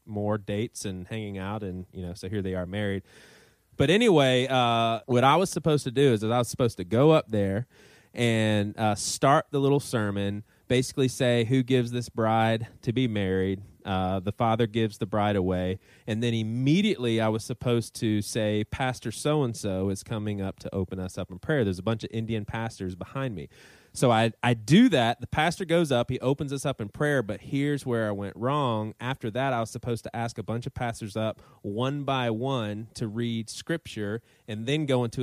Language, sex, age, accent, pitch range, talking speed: English, male, 20-39, American, 105-130 Hz, 210 wpm